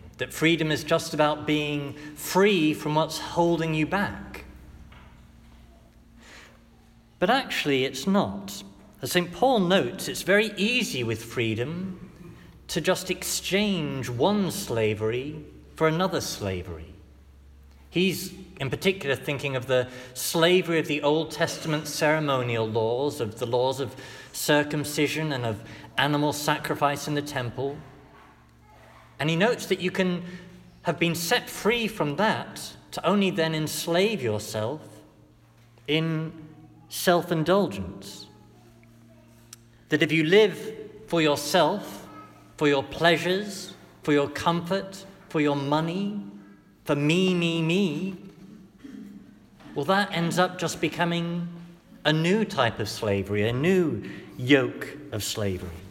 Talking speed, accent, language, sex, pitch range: 120 wpm, British, English, male, 120-180 Hz